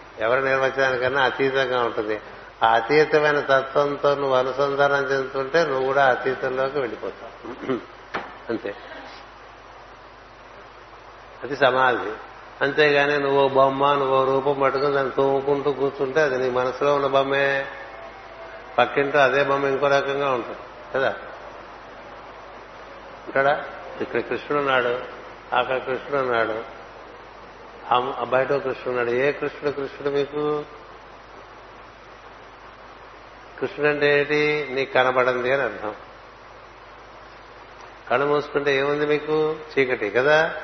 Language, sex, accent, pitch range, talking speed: Telugu, male, native, 135-145 Hz, 90 wpm